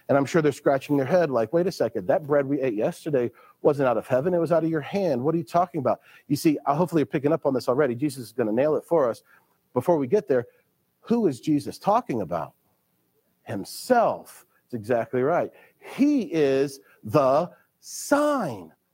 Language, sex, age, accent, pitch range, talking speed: English, male, 40-59, American, 135-180 Hz, 205 wpm